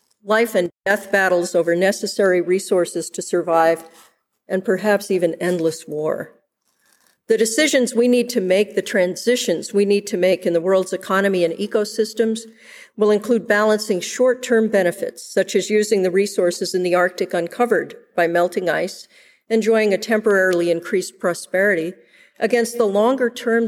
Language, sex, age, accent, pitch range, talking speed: English, female, 50-69, American, 180-225 Hz, 145 wpm